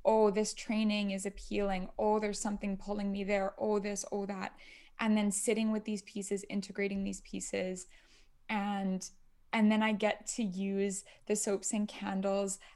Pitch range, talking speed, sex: 200-225 Hz, 165 wpm, female